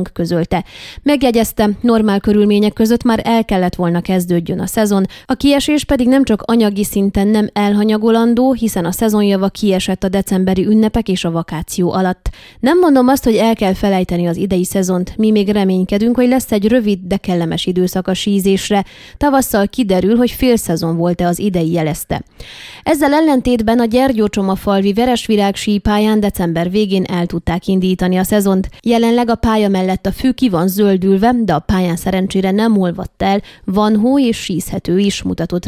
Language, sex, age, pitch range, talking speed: Hungarian, female, 20-39, 185-230 Hz, 165 wpm